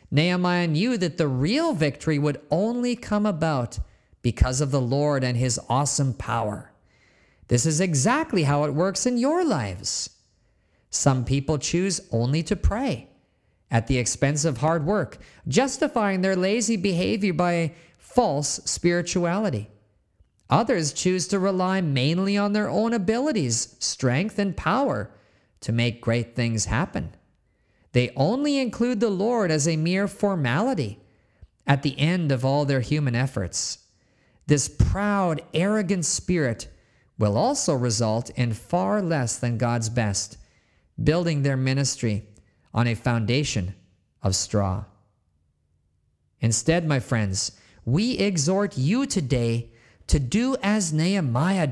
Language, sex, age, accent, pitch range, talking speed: English, male, 40-59, American, 115-185 Hz, 130 wpm